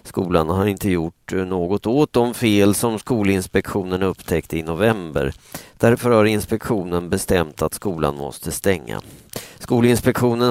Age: 40-59